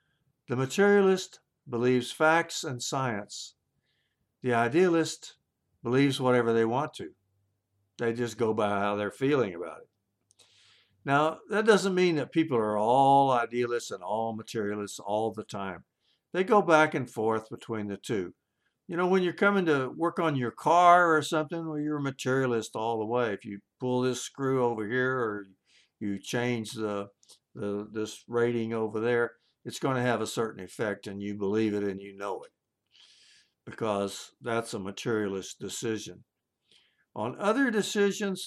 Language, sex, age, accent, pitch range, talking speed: English, male, 60-79, American, 105-145 Hz, 160 wpm